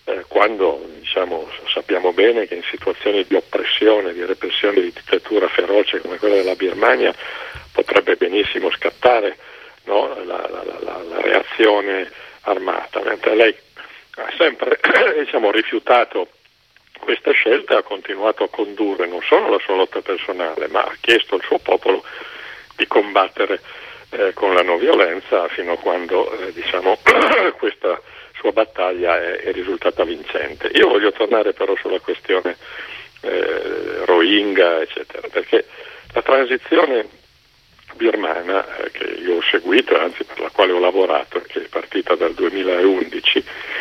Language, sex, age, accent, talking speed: Italian, male, 50-69, native, 140 wpm